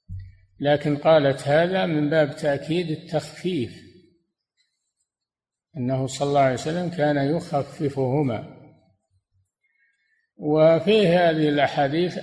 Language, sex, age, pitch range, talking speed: Arabic, male, 60-79, 130-165 Hz, 85 wpm